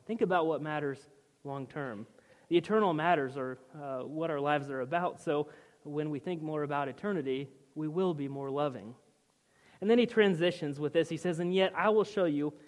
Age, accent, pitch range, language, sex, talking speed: 30-49, American, 140-185 Hz, English, male, 195 wpm